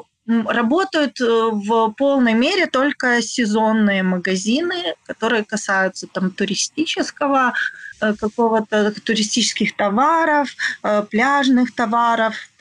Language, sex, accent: Ukrainian, female, native